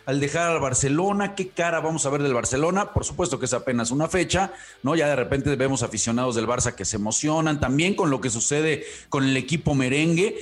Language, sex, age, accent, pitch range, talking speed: English, male, 40-59, Mexican, 125-175 Hz, 220 wpm